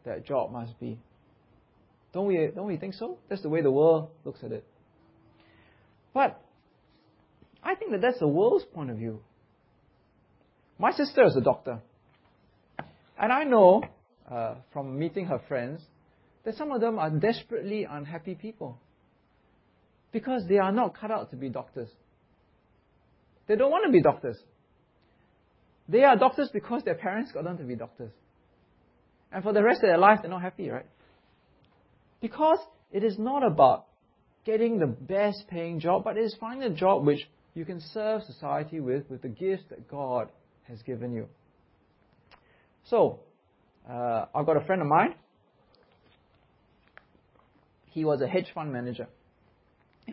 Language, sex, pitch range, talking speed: English, male, 125-215 Hz, 155 wpm